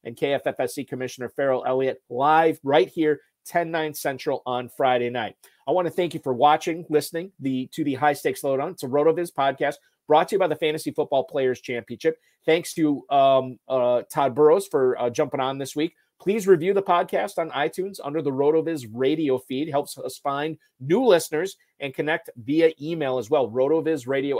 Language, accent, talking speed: English, American, 190 wpm